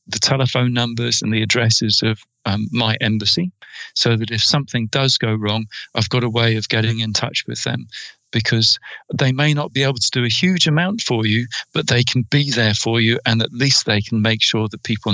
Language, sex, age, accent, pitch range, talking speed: English, male, 40-59, British, 110-135 Hz, 220 wpm